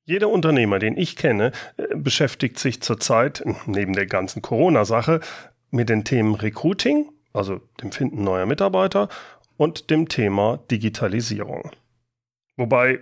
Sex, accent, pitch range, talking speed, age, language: male, German, 115-155 Hz, 120 wpm, 40-59, German